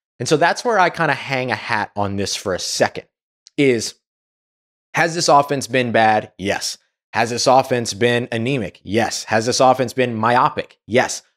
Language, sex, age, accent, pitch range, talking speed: English, male, 20-39, American, 110-150 Hz, 180 wpm